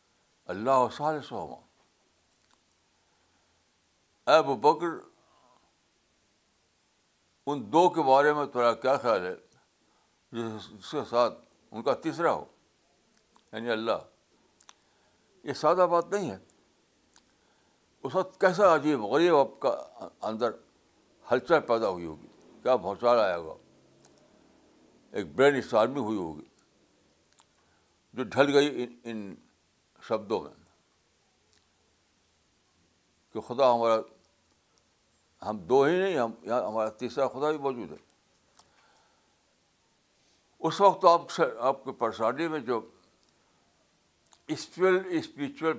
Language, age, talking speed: Urdu, 60-79, 105 wpm